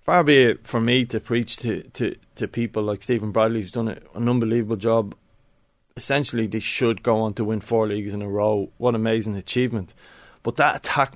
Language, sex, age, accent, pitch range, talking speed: English, male, 20-39, Irish, 110-130 Hz, 195 wpm